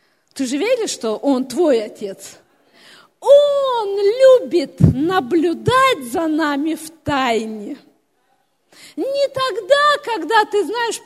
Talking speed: 105 wpm